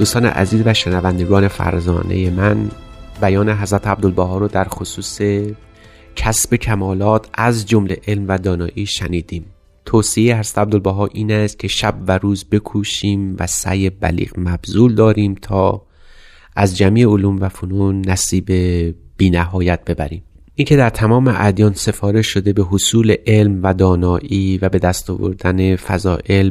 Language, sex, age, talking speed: Persian, male, 30-49, 140 wpm